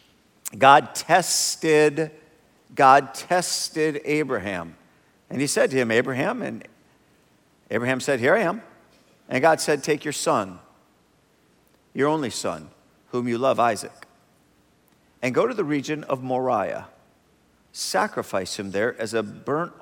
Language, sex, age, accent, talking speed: English, male, 50-69, American, 130 wpm